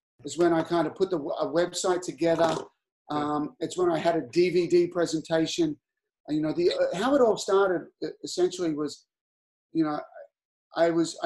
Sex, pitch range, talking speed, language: male, 155-195 Hz, 170 wpm, English